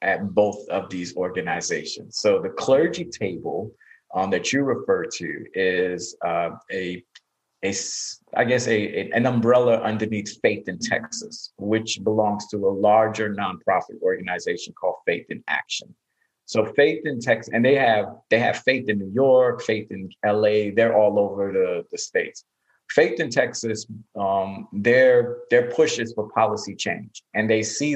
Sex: male